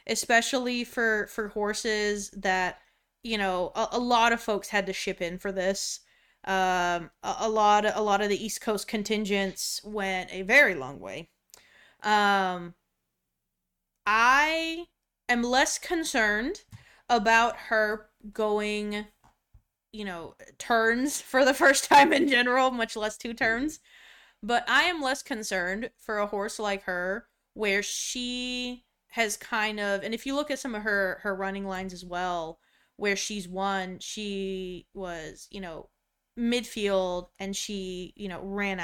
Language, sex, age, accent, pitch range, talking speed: English, female, 20-39, American, 190-230 Hz, 150 wpm